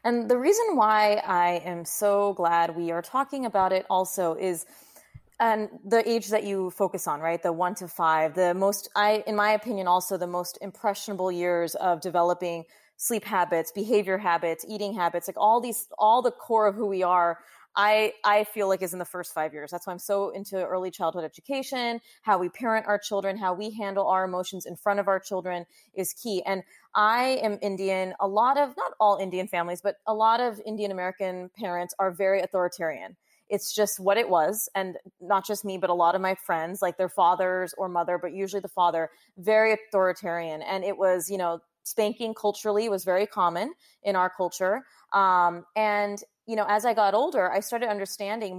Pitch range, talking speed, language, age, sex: 180-210 Hz, 200 wpm, English, 30-49, female